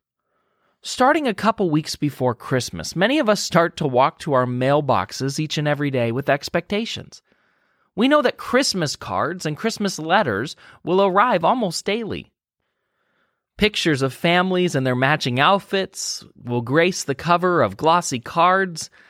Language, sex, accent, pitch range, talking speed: English, male, American, 135-210 Hz, 150 wpm